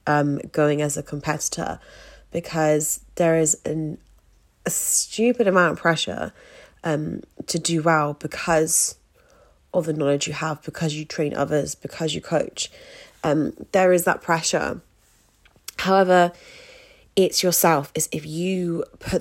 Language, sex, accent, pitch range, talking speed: English, female, British, 150-180 Hz, 130 wpm